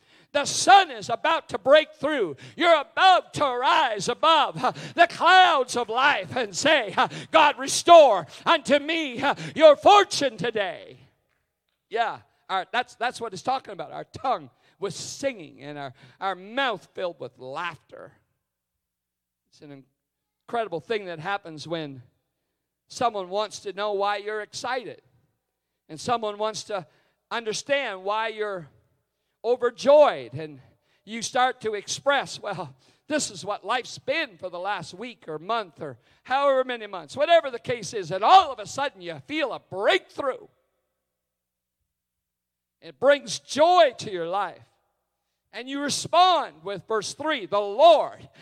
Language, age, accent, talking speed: English, 50-69, American, 145 wpm